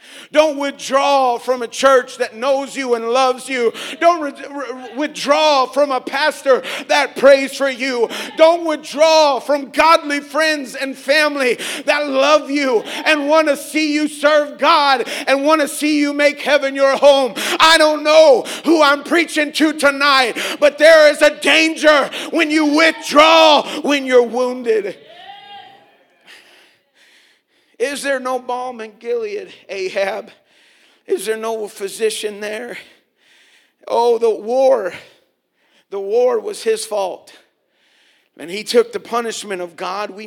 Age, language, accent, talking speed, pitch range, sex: 50-69, English, American, 140 wpm, 225-305 Hz, male